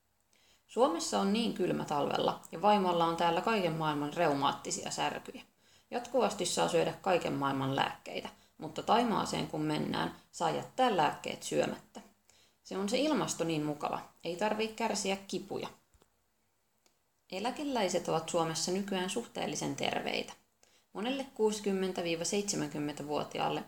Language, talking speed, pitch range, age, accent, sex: Finnish, 115 wpm, 165-220 Hz, 30-49, native, female